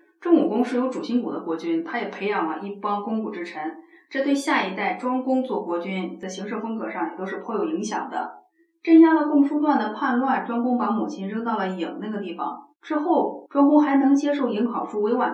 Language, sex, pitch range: Chinese, female, 215-285 Hz